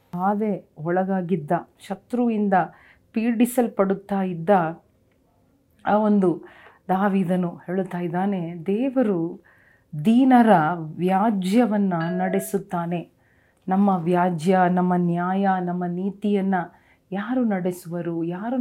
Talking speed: 75 wpm